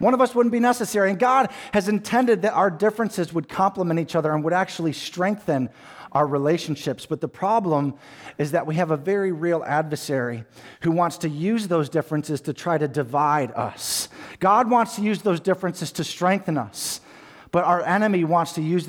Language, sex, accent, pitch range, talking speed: English, male, American, 155-185 Hz, 190 wpm